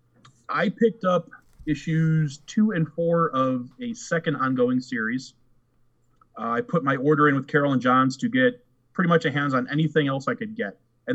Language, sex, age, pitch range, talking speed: English, male, 30-49, 125-200 Hz, 190 wpm